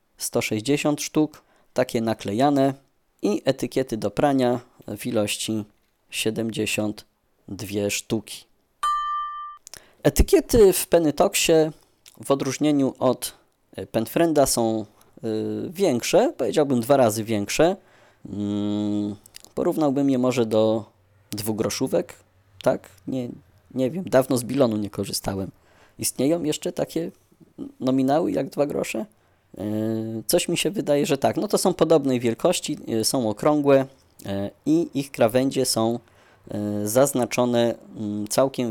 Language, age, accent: Polish, 20-39, native